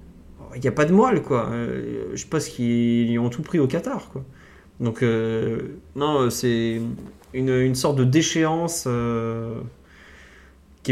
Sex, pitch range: male, 115-140 Hz